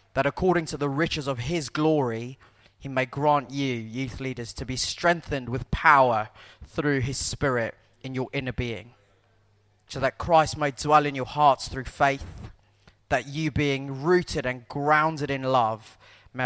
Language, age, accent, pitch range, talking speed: English, 20-39, British, 110-145 Hz, 165 wpm